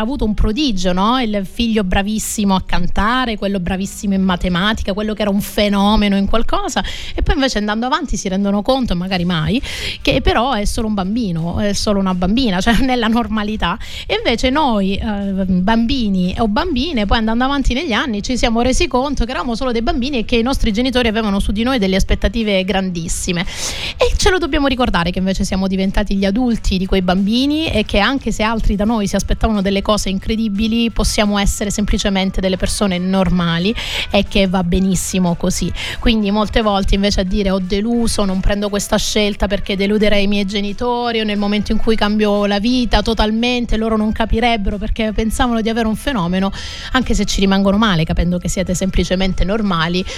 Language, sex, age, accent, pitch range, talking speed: Italian, female, 30-49, native, 190-225 Hz, 190 wpm